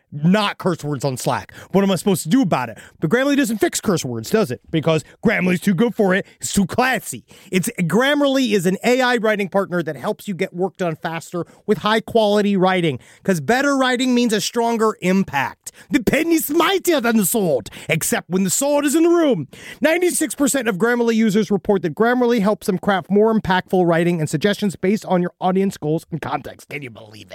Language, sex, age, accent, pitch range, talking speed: English, male, 30-49, American, 175-235 Hz, 205 wpm